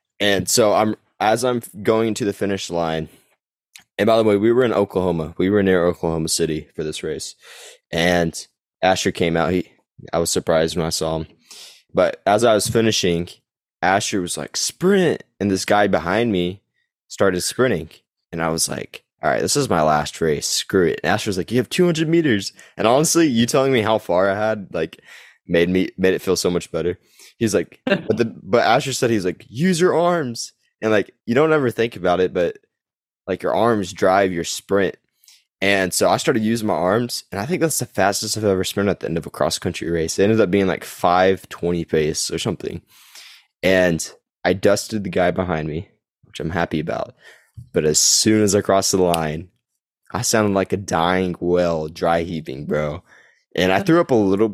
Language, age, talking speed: English, 20-39, 205 wpm